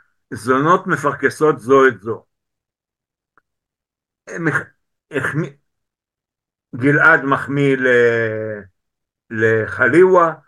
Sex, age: male, 60-79